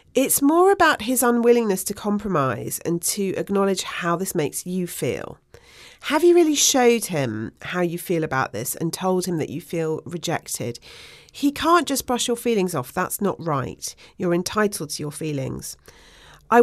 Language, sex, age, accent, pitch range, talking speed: English, female, 40-59, British, 155-210 Hz, 175 wpm